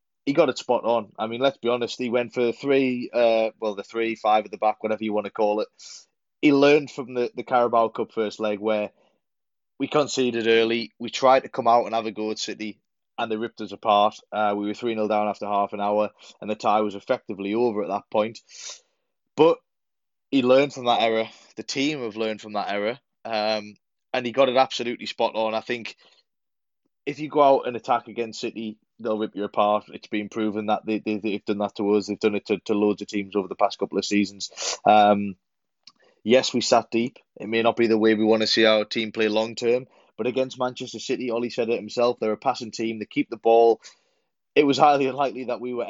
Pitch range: 105-120 Hz